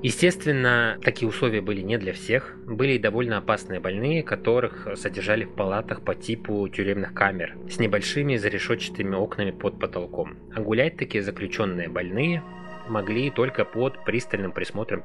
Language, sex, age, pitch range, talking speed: Russian, male, 20-39, 100-130 Hz, 145 wpm